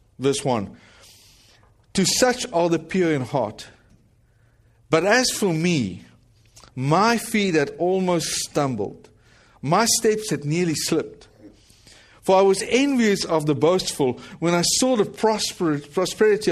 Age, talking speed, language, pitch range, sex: 50-69, 125 wpm, English, 120-185 Hz, male